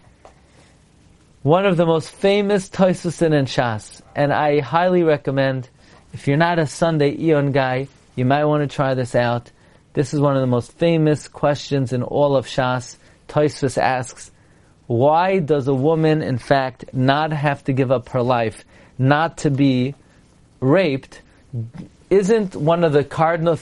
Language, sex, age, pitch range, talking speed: English, male, 40-59, 135-165 Hz, 160 wpm